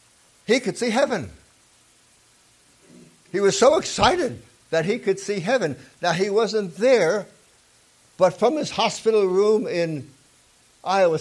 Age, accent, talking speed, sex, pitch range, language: 60-79, American, 130 wpm, male, 125-185 Hz, English